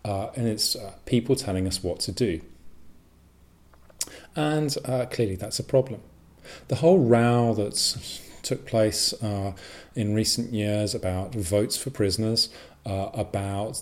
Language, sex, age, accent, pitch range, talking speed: English, male, 40-59, British, 90-110 Hz, 140 wpm